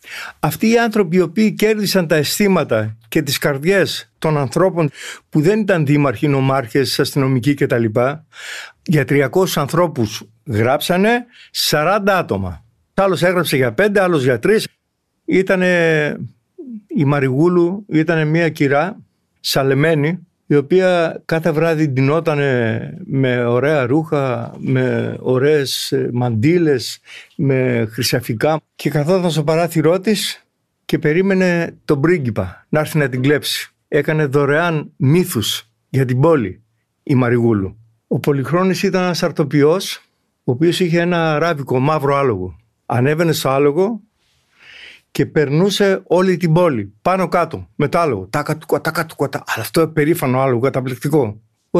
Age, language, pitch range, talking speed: 60-79, Greek, 135-175 Hz, 125 wpm